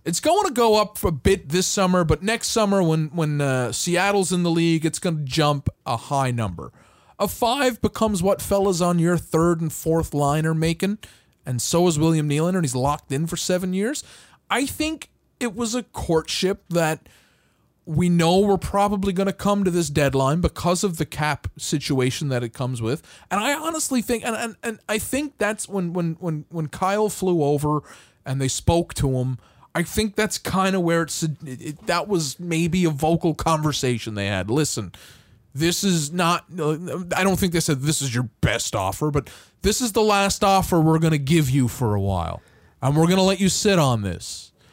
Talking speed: 205 wpm